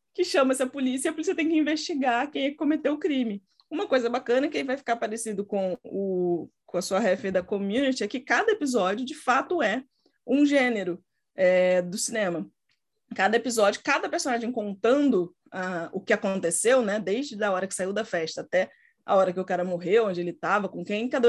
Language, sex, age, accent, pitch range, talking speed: Portuguese, female, 20-39, Brazilian, 185-260 Hz, 205 wpm